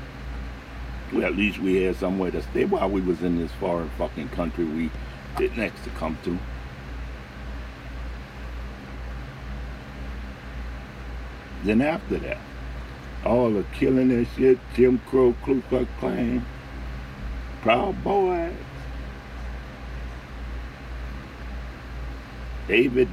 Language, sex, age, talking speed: English, male, 60-79, 100 wpm